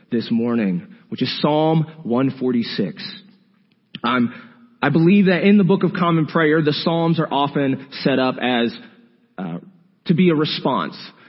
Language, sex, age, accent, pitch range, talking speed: English, male, 30-49, American, 130-185 Hz, 150 wpm